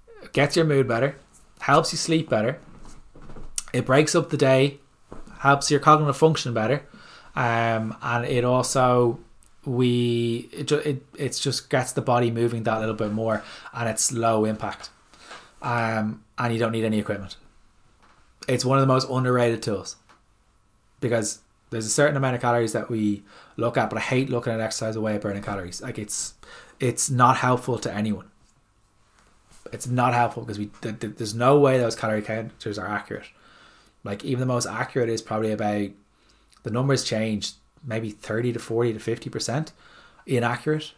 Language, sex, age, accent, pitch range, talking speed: English, male, 20-39, Irish, 110-130 Hz, 165 wpm